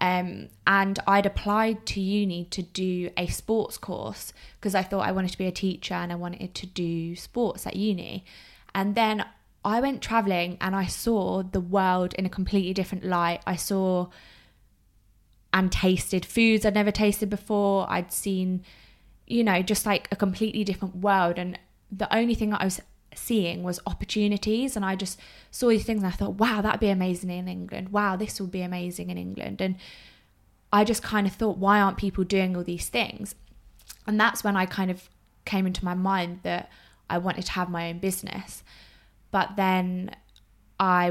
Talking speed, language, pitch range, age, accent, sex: 185 wpm, English, 175-200 Hz, 20-39, British, female